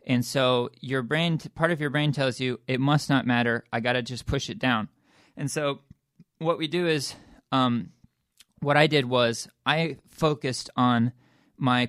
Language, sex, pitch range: English, male, 120-140 Hz